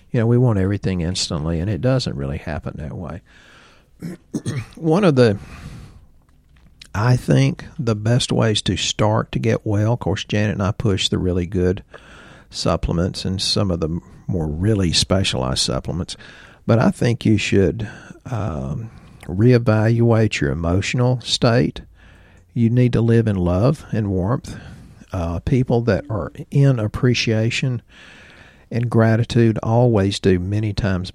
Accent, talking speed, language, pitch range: American, 145 wpm, English, 90-120 Hz